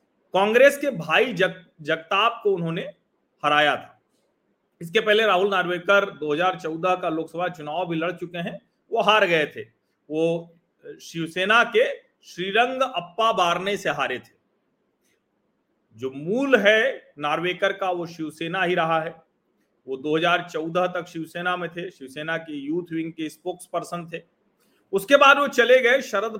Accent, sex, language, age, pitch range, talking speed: native, male, Hindi, 40-59, 170-230 Hz, 145 wpm